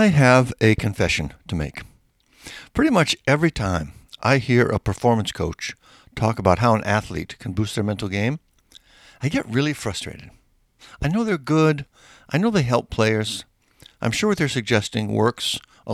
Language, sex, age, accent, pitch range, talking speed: English, male, 60-79, American, 100-130 Hz, 170 wpm